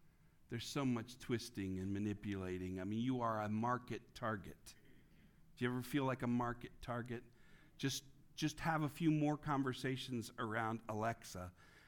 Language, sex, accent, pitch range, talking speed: English, male, American, 110-135 Hz, 150 wpm